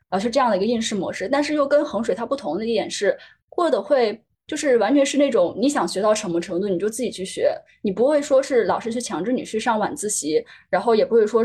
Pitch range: 205-280 Hz